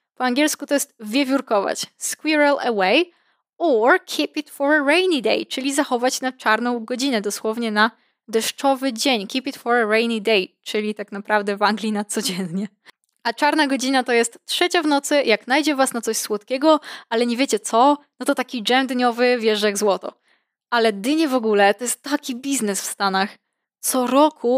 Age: 10-29